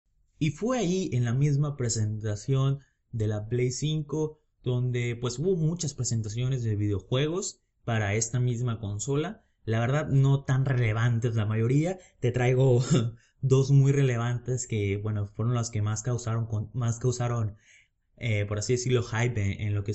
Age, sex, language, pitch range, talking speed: 20-39, male, Spanish, 110-140 Hz, 155 wpm